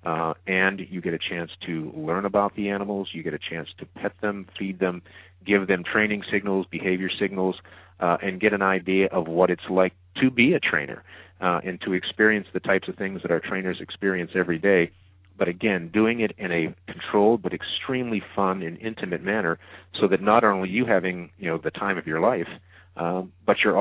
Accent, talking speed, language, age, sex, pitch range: American, 210 wpm, English, 40-59, male, 85-95 Hz